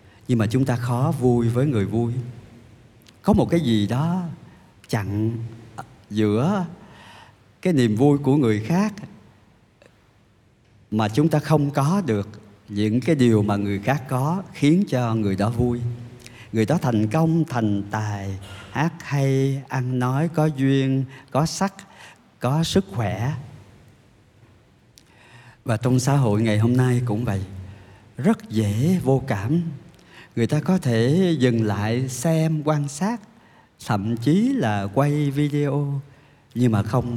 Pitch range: 105-140 Hz